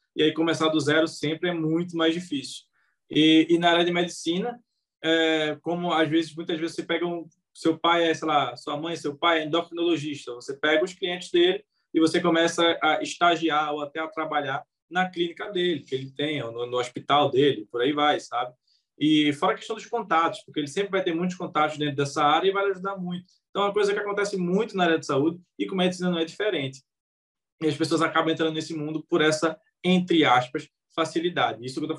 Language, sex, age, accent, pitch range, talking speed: Portuguese, male, 20-39, Brazilian, 150-195 Hz, 220 wpm